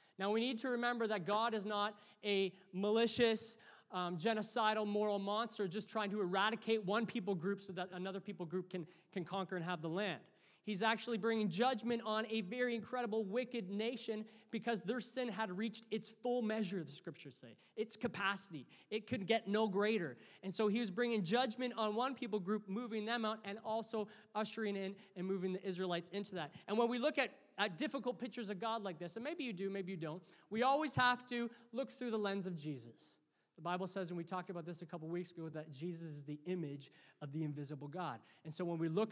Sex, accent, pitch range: male, American, 175-230 Hz